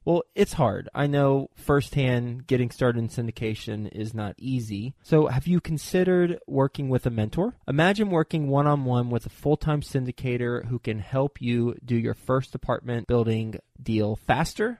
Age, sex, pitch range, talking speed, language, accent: 20-39, male, 120-150 Hz, 160 wpm, English, American